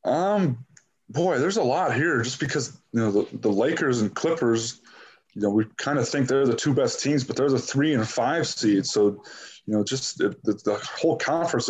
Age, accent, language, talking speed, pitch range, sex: 20-39, American, English, 220 wpm, 115-140 Hz, male